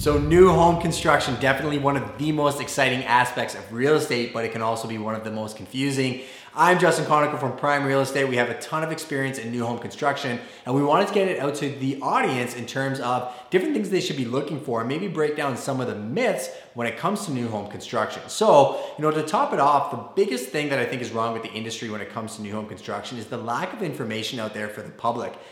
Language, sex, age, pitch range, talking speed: English, male, 30-49, 115-135 Hz, 260 wpm